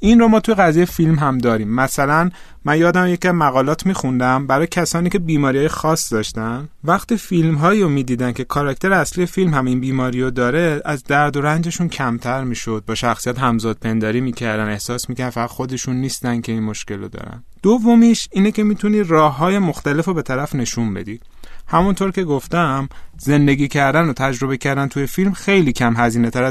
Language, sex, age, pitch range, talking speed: Persian, male, 30-49, 120-165 Hz, 175 wpm